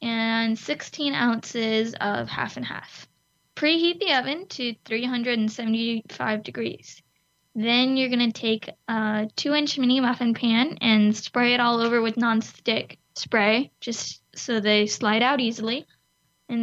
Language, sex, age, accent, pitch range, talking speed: English, female, 10-29, American, 220-245 Hz, 135 wpm